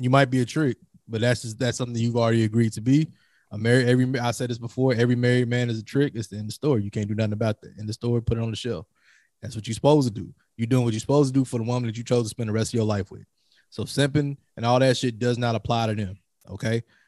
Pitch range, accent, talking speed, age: 110-130 Hz, American, 310 wpm, 20-39